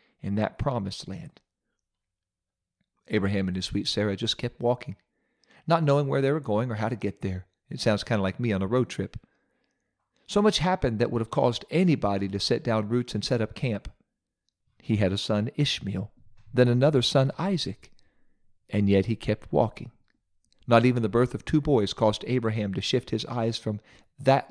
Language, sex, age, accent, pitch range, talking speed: English, male, 50-69, American, 105-130 Hz, 190 wpm